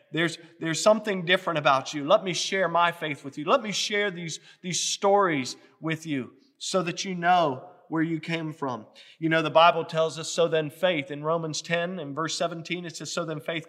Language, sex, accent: English, male, American